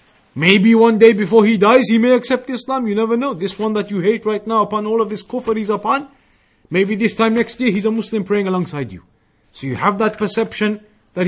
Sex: male